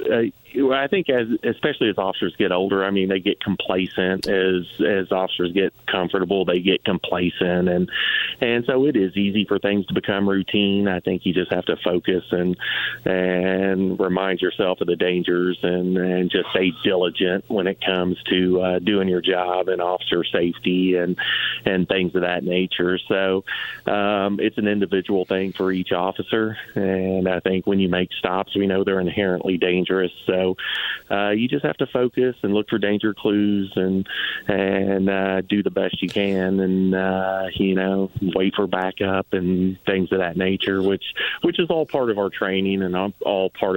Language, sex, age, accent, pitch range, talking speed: English, male, 30-49, American, 95-100 Hz, 180 wpm